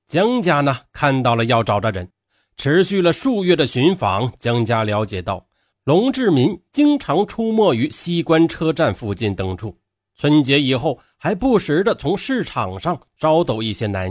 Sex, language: male, Chinese